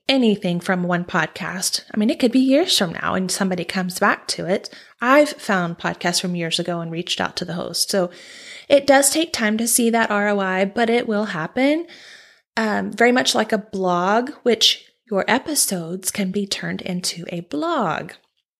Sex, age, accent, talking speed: female, 20-39, American, 185 wpm